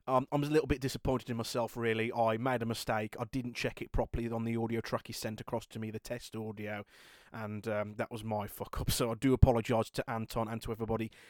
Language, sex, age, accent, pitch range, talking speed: English, male, 30-49, British, 110-130 Hz, 240 wpm